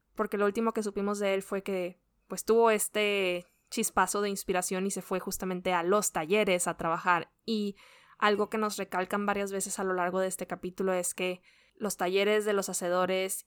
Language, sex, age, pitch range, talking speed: Spanish, female, 20-39, 175-200 Hz, 190 wpm